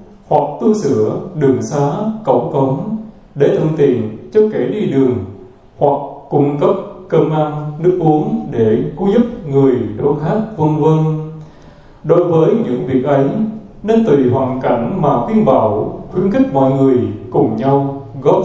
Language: Vietnamese